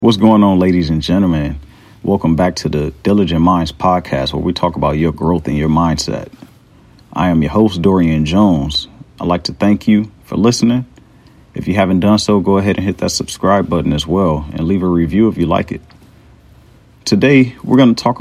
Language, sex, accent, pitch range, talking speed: English, male, American, 80-110 Hz, 205 wpm